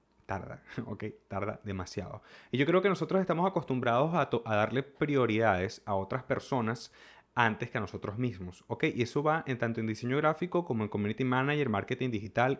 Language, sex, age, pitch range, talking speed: Spanish, male, 30-49, 105-135 Hz, 185 wpm